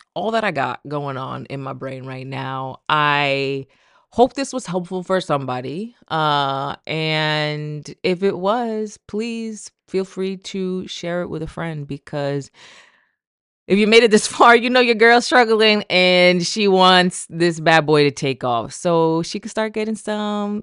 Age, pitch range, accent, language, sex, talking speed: 20-39, 140-205 Hz, American, English, female, 170 wpm